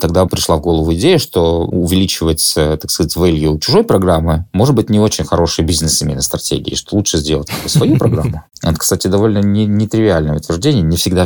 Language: Russian